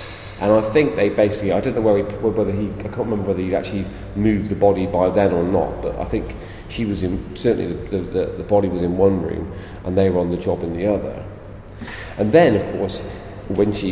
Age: 40-59